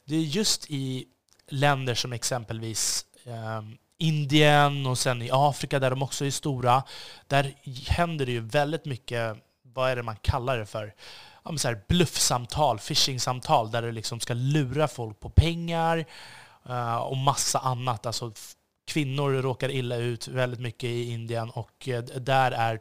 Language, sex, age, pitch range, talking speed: Swedish, male, 20-39, 115-145 Hz, 160 wpm